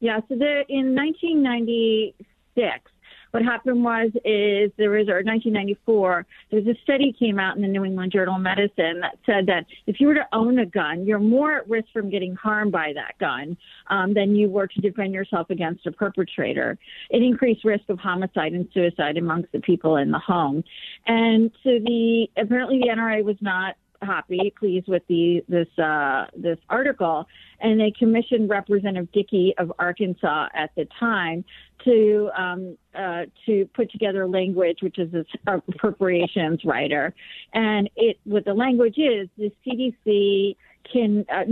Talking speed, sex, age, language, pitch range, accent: 170 wpm, female, 40-59, English, 185-225 Hz, American